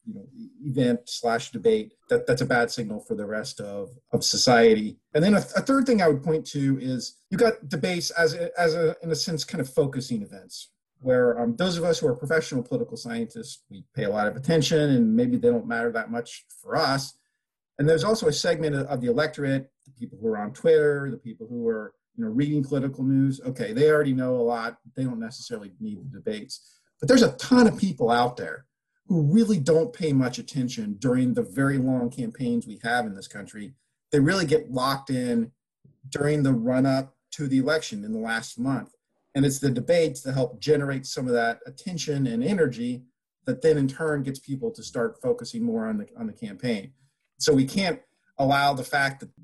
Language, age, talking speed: English, 40-59, 215 wpm